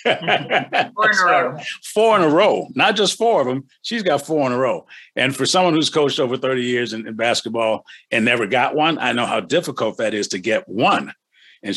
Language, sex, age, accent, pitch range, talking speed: English, male, 50-69, American, 110-140 Hz, 225 wpm